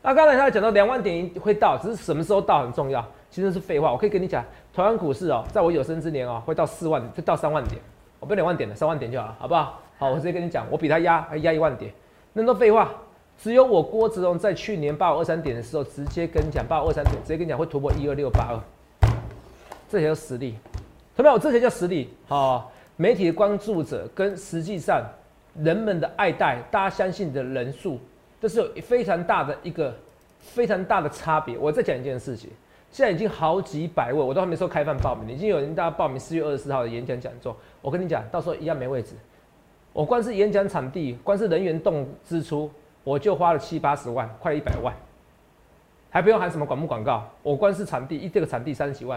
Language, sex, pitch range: Chinese, male, 135-195 Hz